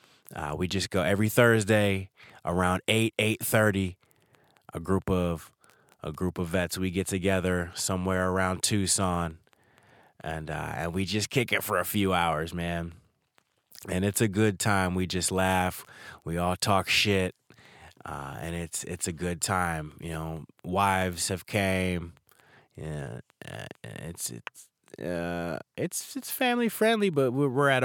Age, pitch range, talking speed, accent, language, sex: 20-39, 90-105 Hz, 150 wpm, American, English, male